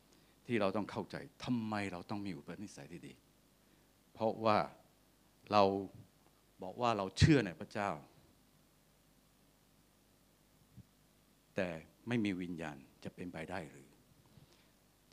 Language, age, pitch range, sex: Thai, 60-79, 105-145 Hz, male